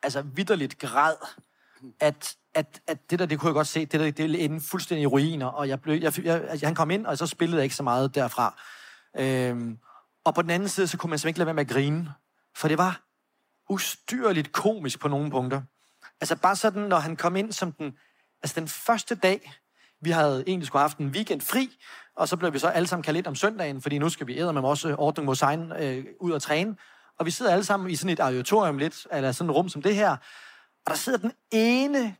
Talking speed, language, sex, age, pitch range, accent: 235 wpm, Danish, male, 30-49, 145-195 Hz, native